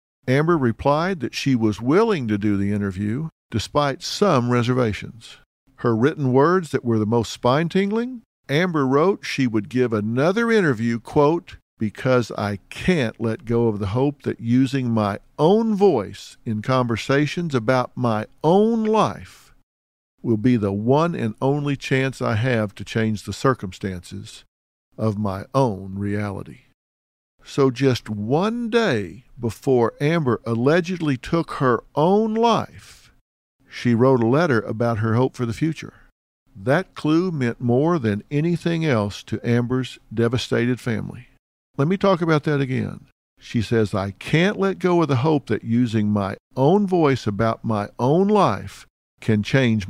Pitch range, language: 110-150 Hz, English